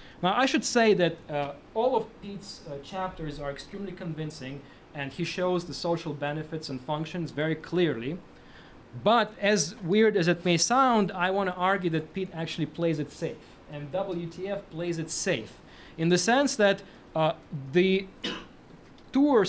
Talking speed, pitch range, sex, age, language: 160 wpm, 160-205 Hz, male, 20-39, English